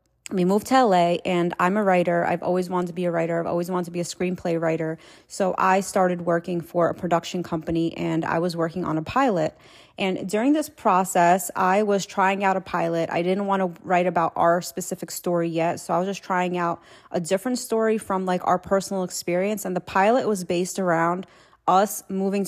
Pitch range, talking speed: 175-200 Hz, 215 wpm